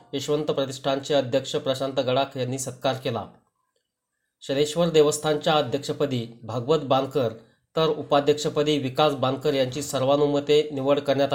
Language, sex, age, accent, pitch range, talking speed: Marathi, male, 30-49, native, 130-150 Hz, 115 wpm